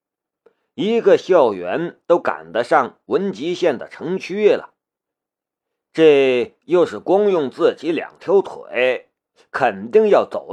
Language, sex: Chinese, male